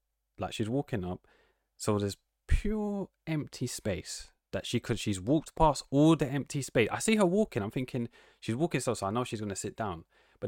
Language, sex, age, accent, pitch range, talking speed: English, male, 20-39, British, 100-140 Hz, 210 wpm